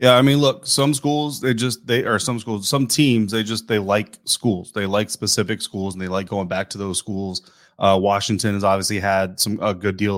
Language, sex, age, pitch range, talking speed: English, male, 20-39, 100-115 Hz, 235 wpm